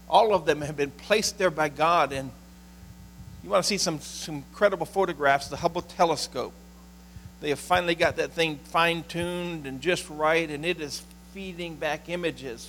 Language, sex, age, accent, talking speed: English, male, 50-69, American, 175 wpm